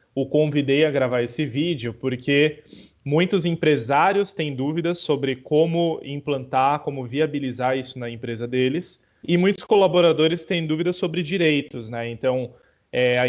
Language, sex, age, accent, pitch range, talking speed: Portuguese, male, 20-39, Brazilian, 125-155 Hz, 135 wpm